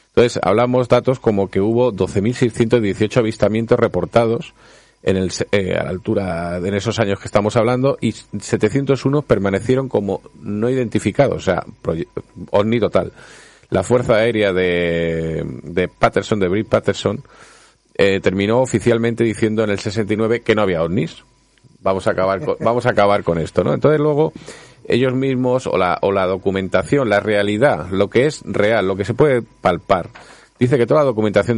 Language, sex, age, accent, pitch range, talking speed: Spanish, male, 40-59, Spanish, 100-125 Hz, 165 wpm